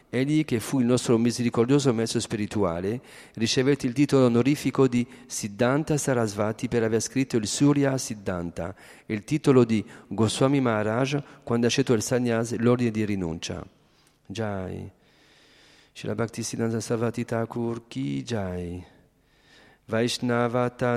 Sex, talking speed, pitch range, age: male, 120 wpm, 110-135 Hz, 40-59